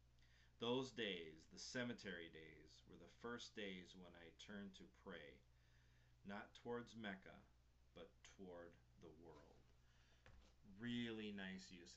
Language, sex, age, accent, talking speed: English, male, 40-59, American, 120 wpm